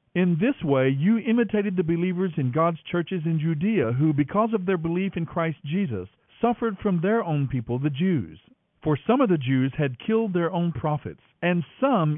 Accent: American